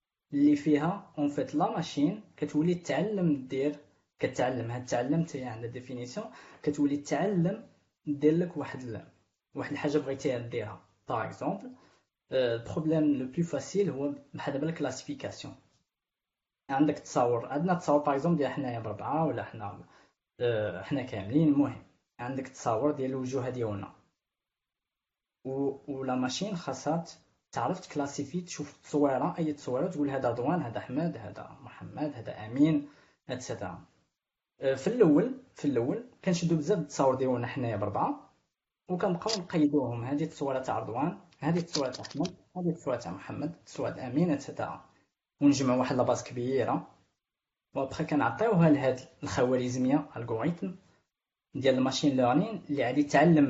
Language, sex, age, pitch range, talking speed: Arabic, female, 20-39, 130-160 Hz, 130 wpm